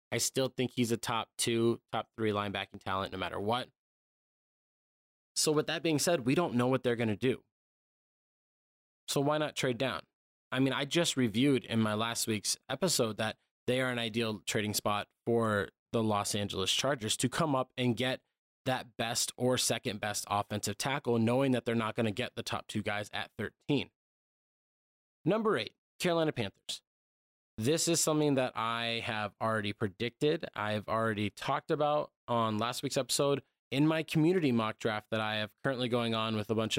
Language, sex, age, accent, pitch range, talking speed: English, male, 20-39, American, 105-130 Hz, 185 wpm